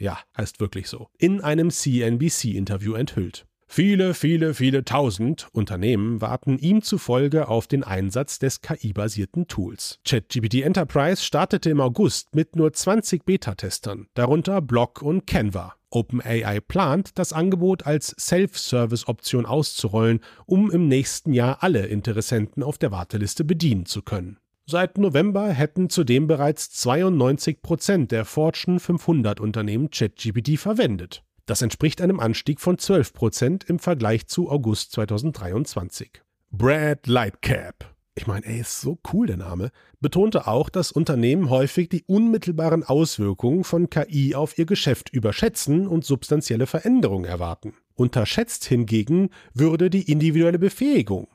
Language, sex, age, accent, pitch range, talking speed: German, male, 40-59, German, 110-170 Hz, 130 wpm